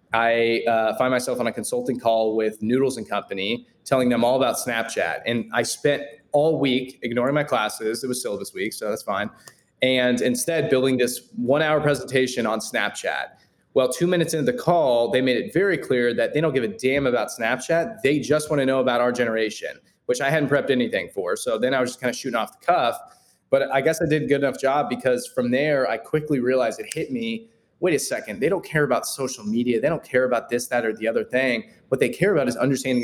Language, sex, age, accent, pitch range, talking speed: English, male, 20-39, American, 120-145 Hz, 230 wpm